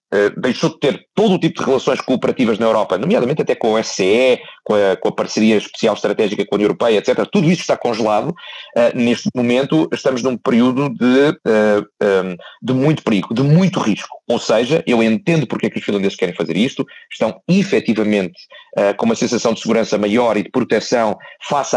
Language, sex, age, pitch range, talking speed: Portuguese, male, 40-59, 110-160 Hz, 200 wpm